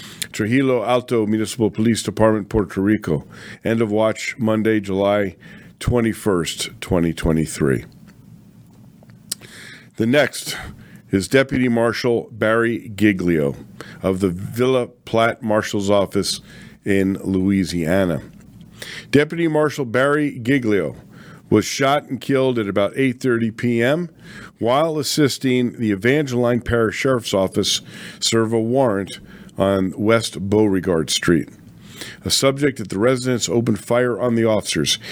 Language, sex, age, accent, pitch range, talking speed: English, male, 50-69, American, 100-120 Hz, 110 wpm